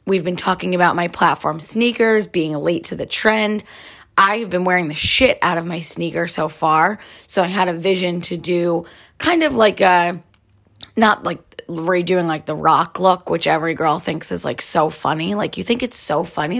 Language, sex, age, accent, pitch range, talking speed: English, female, 20-39, American, 170-210 Hz, 200 wpm